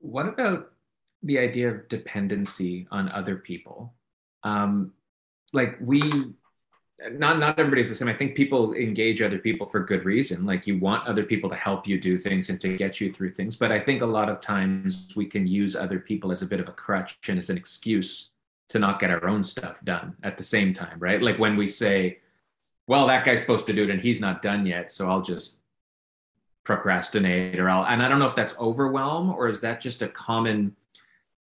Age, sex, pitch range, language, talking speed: 30-49, male, 95-120 Hz, English, 210 wpm